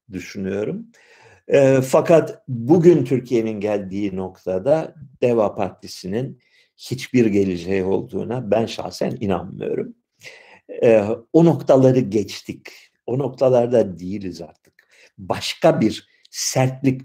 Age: 60-79